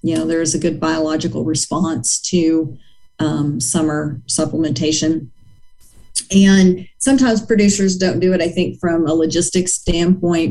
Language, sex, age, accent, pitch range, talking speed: English, female, 40-59, American, 160-180 Hz, 135 wpm